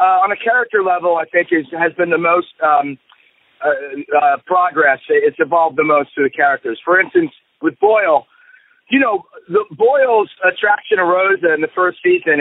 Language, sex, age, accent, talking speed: English, male, 40-59, American, 180 wpm